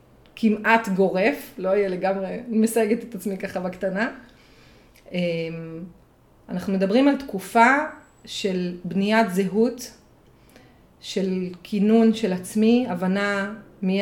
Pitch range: 185-225 Hz